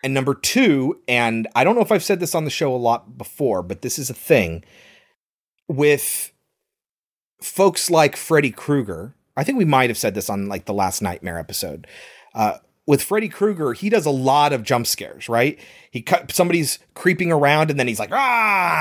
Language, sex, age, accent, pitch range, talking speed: English, male, 30-49, American, 125-185 Hz, 200 wpm